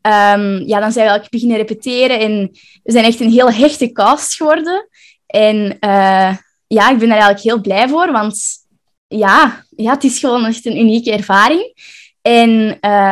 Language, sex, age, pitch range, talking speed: Dutch, female, 10-29, 215-270 Hz, 175 wpm